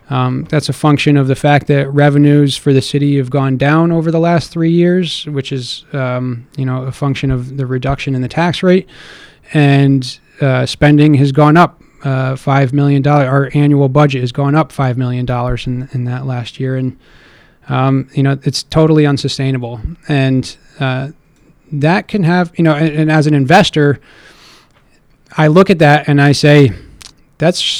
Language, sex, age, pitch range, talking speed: English, male, 20-39, 135-155 Hz, 180 wpm